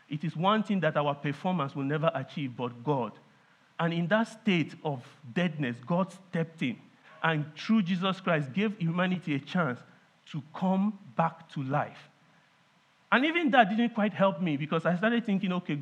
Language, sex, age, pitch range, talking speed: English, male, 50-69, 145-185 Hz, 175 wpm